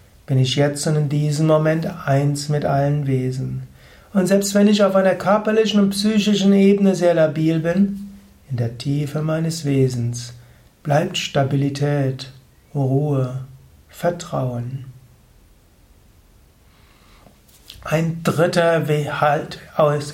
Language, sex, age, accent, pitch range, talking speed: German, male, 60-79, German, 135-180 Hz, 105 wpm